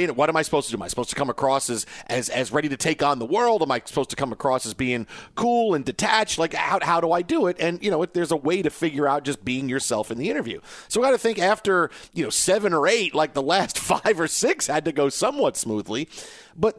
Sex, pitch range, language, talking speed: male, 135-175 Hz, English, 280 wpm